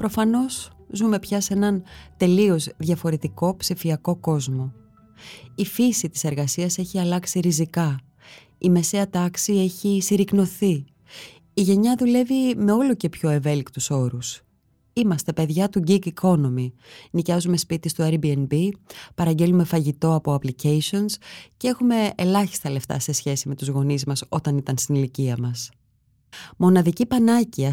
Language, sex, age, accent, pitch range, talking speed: Greek, female, 20-39, native, 140-185 Hz, 130 wpm